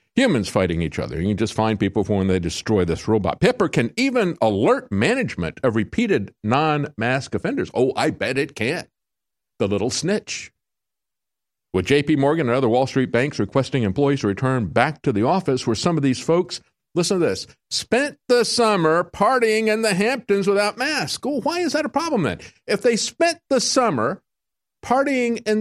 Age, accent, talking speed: 50-69, American, 185 wpm